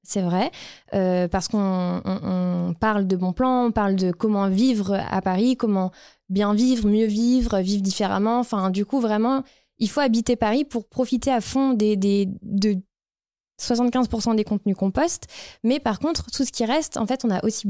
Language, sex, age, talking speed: French, female, 20-39, 195 wpm